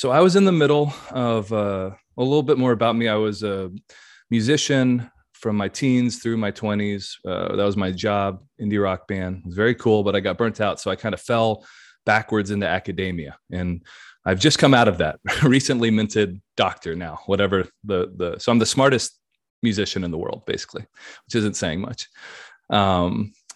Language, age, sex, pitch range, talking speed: English, 30-49, male, 95-120 Hz, 195 wpm